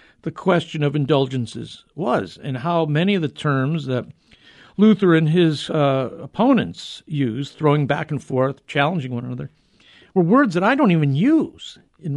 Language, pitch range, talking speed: English, 135-180 Hz, 165 wpm